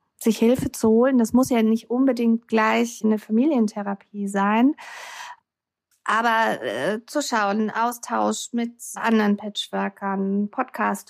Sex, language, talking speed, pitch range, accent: female, German, 120 wpm, 200-235 Hz, German